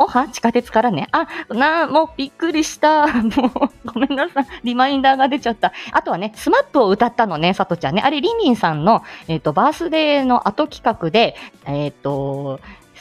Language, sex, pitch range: Japanese, female, 180-270 Hz